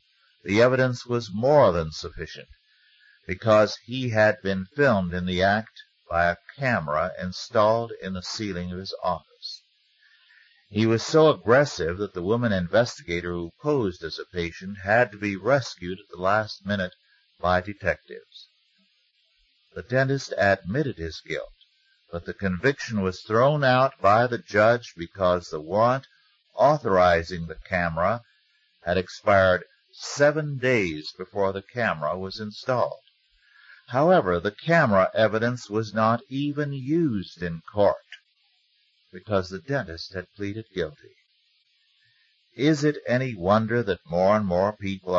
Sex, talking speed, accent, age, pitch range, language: male, 135 wpm, American, 50-69, 90-125 Hz, English